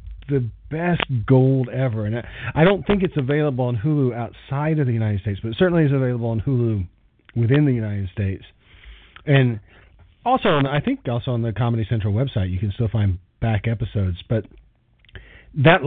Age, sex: 40-59, male